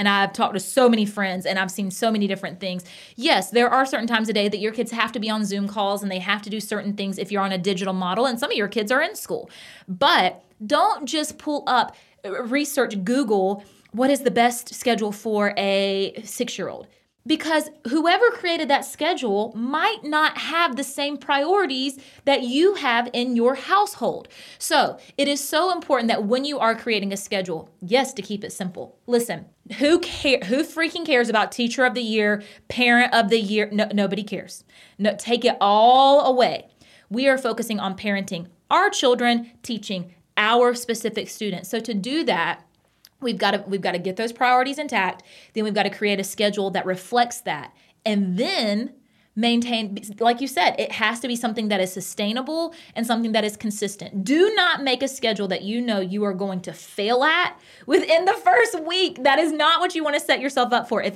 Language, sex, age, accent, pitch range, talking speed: English, female, 20-39, American, 200-270 Hz, 205 wpm